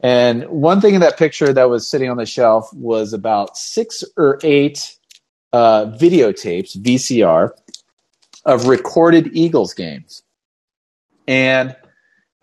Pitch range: 100-135 Hz